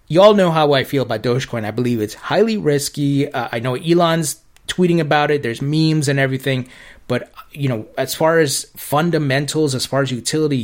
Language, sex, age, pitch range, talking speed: English, male, 30-49, 135-160 Hz, 190 wpm